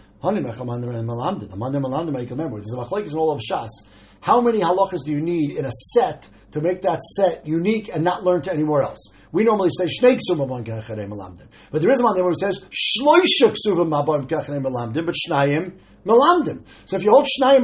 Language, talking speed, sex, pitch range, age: English, 220 wpm, male, 145-210 Hz, 50-69